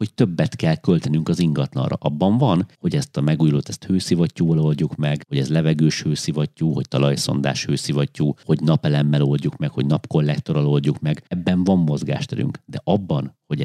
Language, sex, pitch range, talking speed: Hungarian, male, 70-90 Hz, 165 wpm